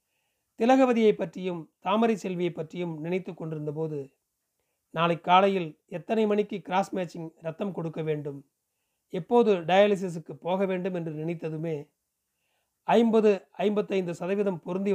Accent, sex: native, male